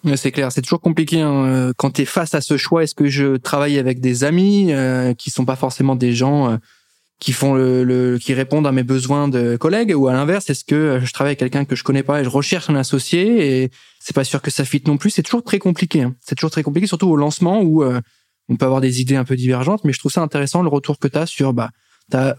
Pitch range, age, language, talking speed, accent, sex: 130-165 Hz, 20-39, French, 255 wpm, French, male